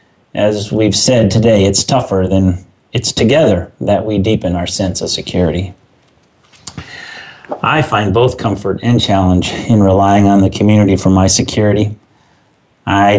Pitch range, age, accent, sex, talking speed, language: 95-120 Hz, 30-49, American, male, 140 wpm, English